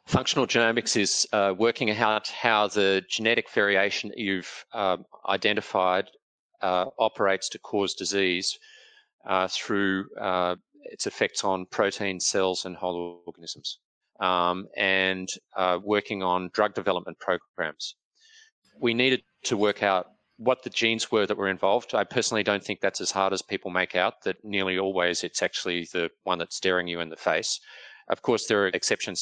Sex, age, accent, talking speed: male, 30-49, Australian, 160 wpm